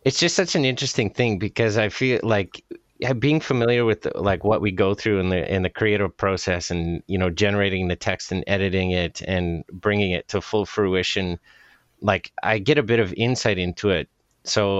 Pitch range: 90-110 Hz